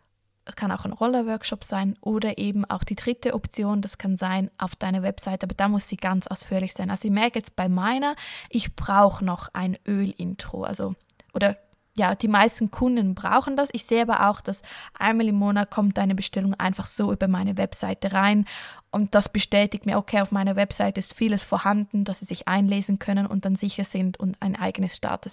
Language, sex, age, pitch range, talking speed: German, female, 20-39, 190-215 Hz, 200 wpm